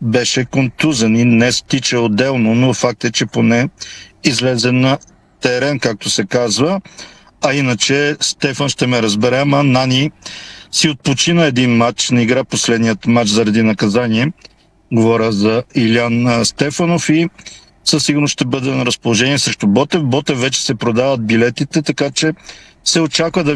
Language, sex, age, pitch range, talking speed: Bulgarian, male, 50-69, 120-150 Hz, 150 wpm